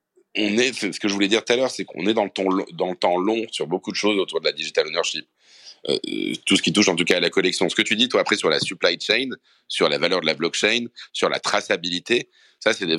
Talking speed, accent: 285 wpm, French